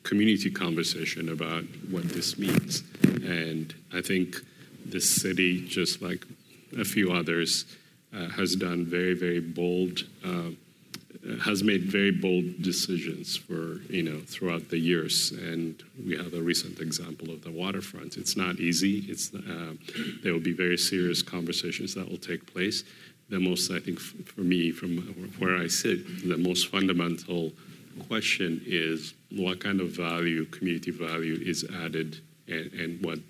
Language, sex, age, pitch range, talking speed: English, male, 40-59, 85-95 Hz, 150 wpm